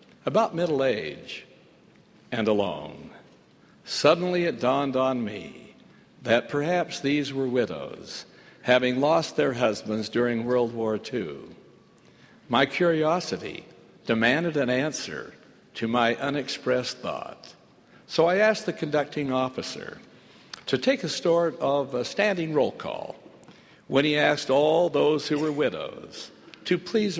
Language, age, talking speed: English, 60-79, 125 wpm